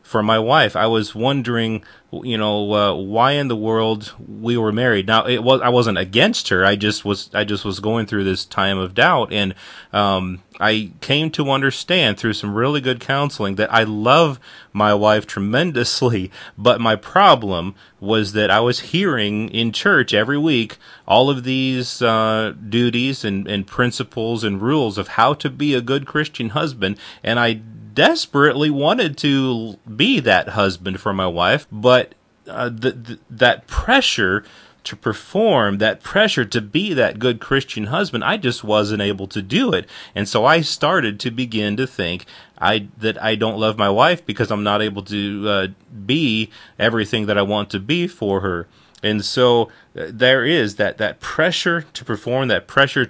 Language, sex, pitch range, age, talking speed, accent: English, male, 105-130 Hz, 30-49, 180 wpm, American